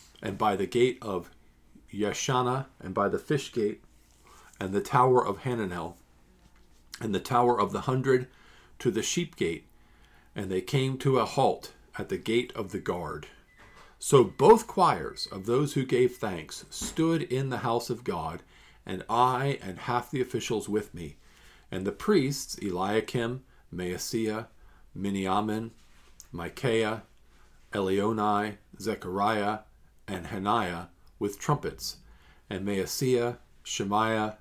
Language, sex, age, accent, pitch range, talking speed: English, male, 50-69, American, 95-125 Hz, 135 wpm